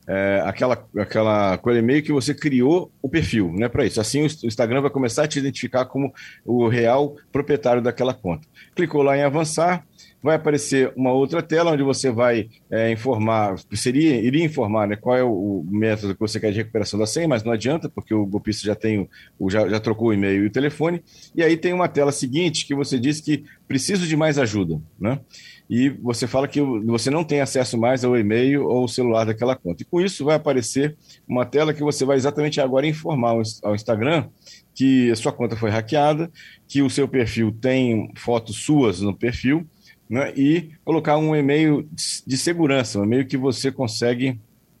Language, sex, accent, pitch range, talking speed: Portuguese, male, Brazilian, 115-150 Hz, 195 wpm